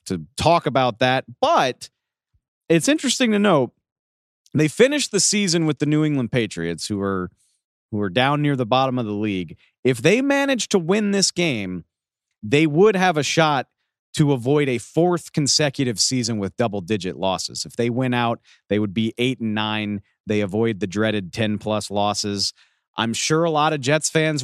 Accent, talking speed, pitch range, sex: American, 185 wpm, 105-150 Hz, male